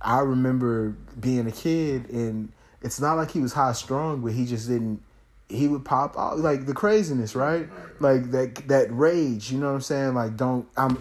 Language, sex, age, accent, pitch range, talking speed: English, male, 30-49, American, 110-130 Hz, 200 wpm